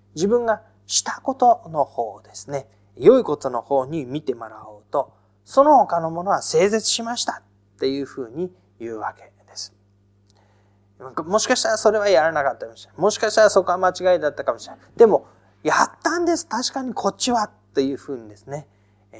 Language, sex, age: Japanese, male, 20-39